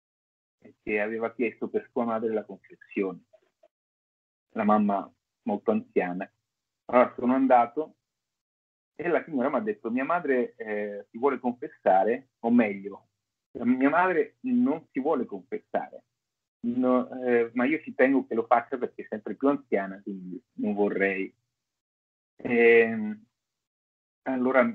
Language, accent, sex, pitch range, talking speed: Italian, native, male, 110-145 Hz, 135 wpm